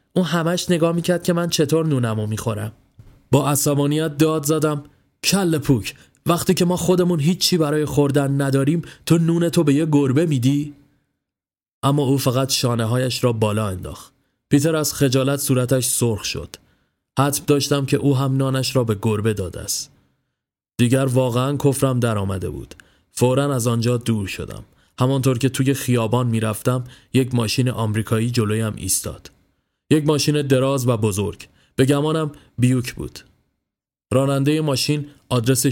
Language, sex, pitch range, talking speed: Persian, male, 110-140 Hz, 145 wpm